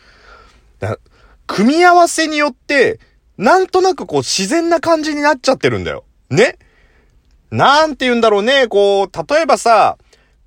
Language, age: Japanese, 30-49